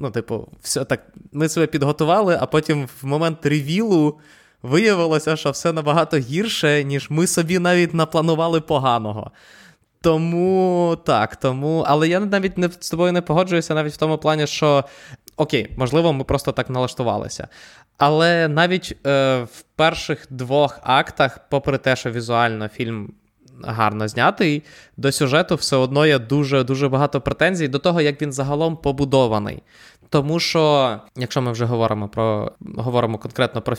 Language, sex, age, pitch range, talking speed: Ukrainian, male, 20-39, 125-160 Hz, 145 wpm